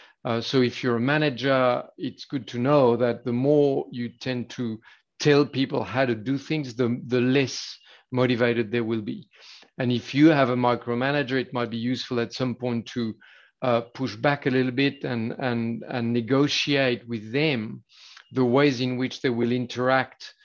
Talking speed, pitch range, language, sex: 180 wpm, 120-140 Hz, English, male